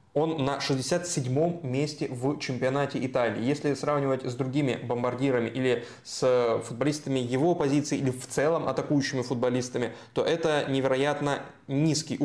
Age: 20-39